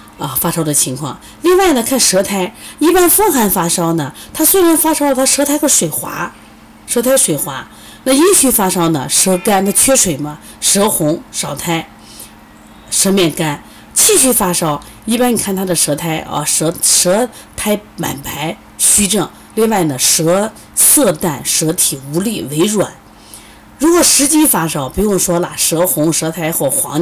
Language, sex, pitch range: Chinese, female, 155-255 Hz